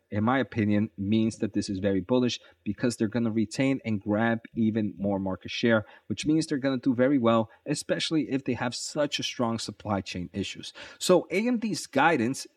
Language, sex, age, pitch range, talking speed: English, male, 30-49, 105-130 Hz, 195 wpm